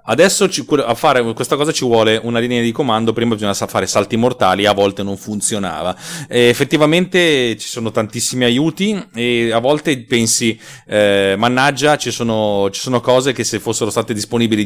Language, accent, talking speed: Italian, native, 165 wpm